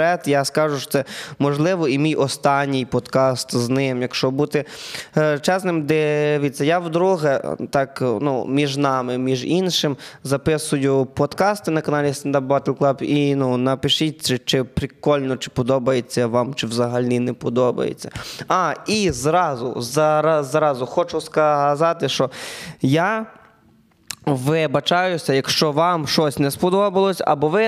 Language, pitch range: Ukrainian, 135-160 Hz